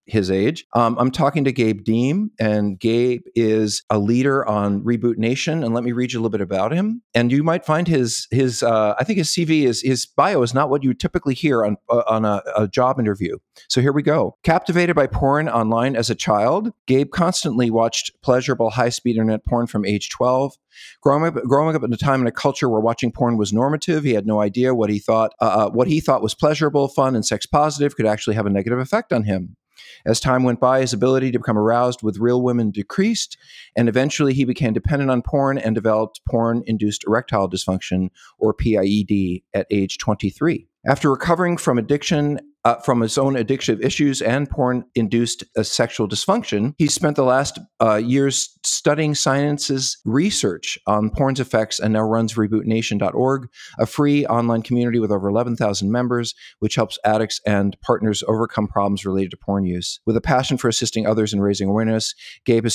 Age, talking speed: 50-69, 195 wpm